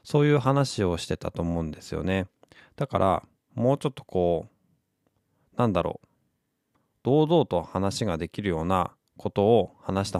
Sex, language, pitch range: male, Japanese, 90-120 Hz